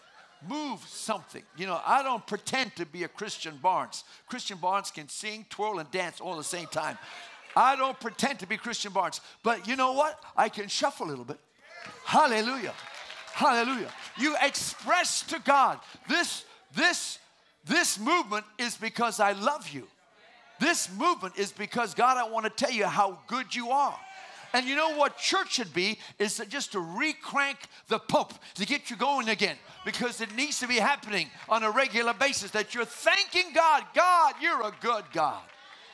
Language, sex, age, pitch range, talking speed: English, male, 50-69, 180-270 Hz, 175 wpm